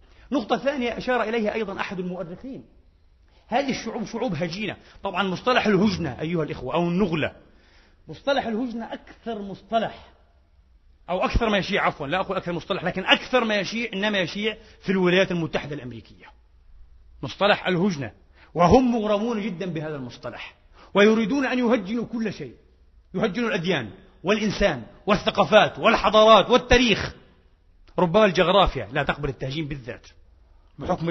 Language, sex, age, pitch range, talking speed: Arabic, male, 40-59, 150-235 Hz, 125 wpm